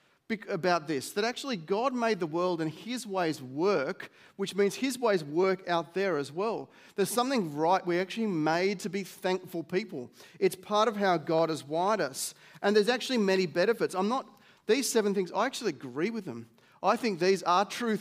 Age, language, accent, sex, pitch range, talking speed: 30-49, English, Australian, male, 155-205 Hz, 195 wpm